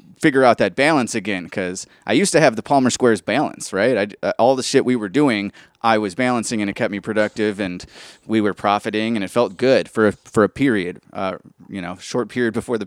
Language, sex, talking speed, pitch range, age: English, male, 235 wpm, 105-125 Hz, 30-49